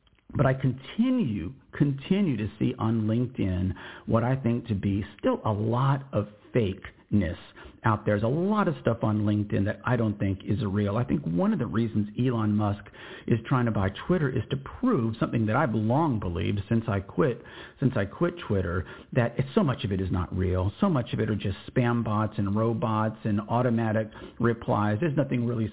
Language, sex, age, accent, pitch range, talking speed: English, male, 50-69, American, 105-130 Hz, 200 wpm